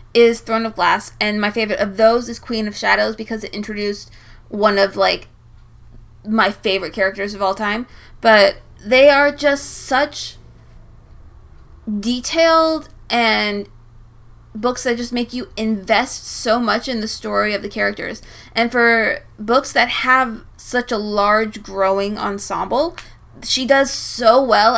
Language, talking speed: English, 145 wpm